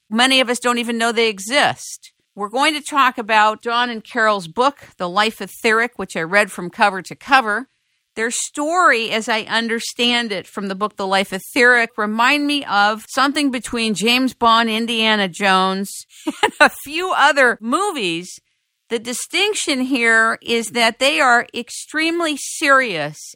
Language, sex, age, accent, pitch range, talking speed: English, female, 50-69, American, 205-270 Hz, 160 wpm